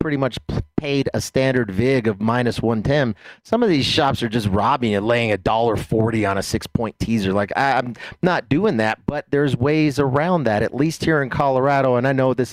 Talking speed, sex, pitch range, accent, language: 215 wpm, male, 115-150 Hz, American, English